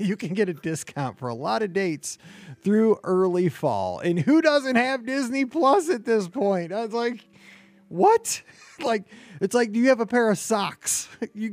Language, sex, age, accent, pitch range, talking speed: English, male, 30-49, American, 145-215 Hz, 195 wpm